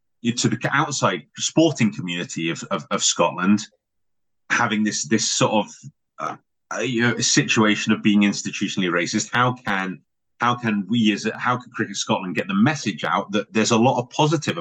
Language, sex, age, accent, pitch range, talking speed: English, male, 30-49, British, 100-115 Hz, 175 wpm